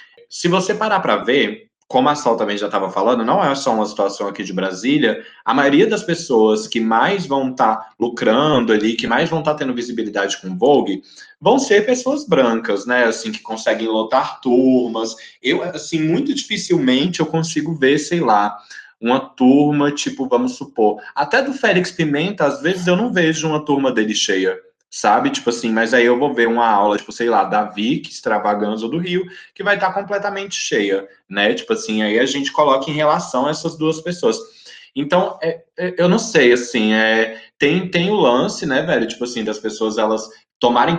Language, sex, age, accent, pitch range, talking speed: Portuguese, male, 20-39, Brazilian, 115-170 Hz, 190 wpm